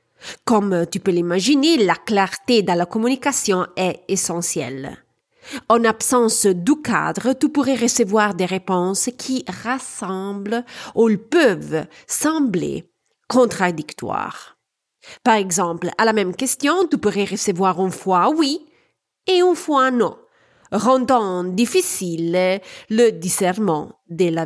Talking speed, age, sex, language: 120 wpm, 40-59, female, French